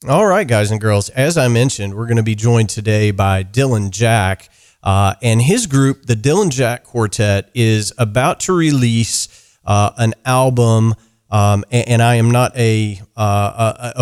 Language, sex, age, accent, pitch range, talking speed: English, male, 40-59, American, 105-135 Hz, 165 wpm